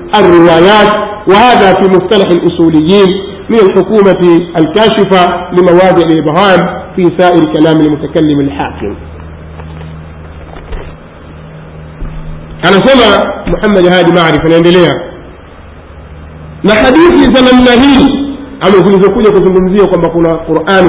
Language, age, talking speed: Swahili, 50-69, 95 wpm